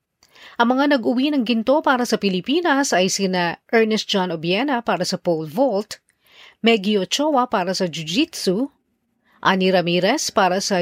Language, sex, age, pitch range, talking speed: Filipino, female, 40-59, 180-240 Hz, 145 wpm